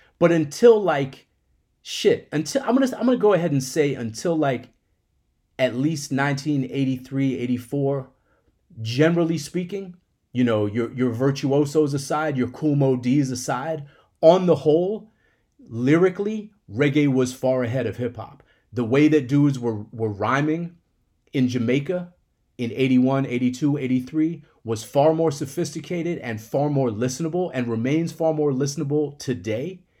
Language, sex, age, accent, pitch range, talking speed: English, male, 30-49, American, 115-150 Hz, 140 wpm